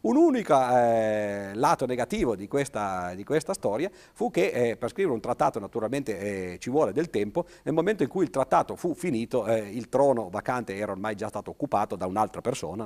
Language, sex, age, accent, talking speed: Italian, male, 50-69, native, 200 wpm